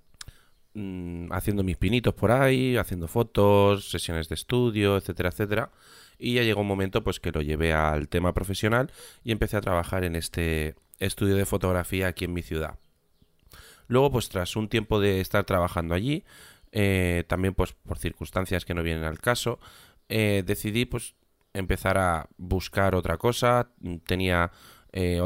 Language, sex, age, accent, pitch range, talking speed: Spanish, male, 20-39, Spanish, 85-110 Hz, 150 wpm